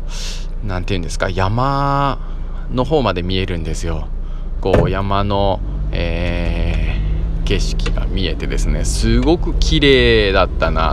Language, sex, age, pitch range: Japanese, male, 20-39, 80-110 Hz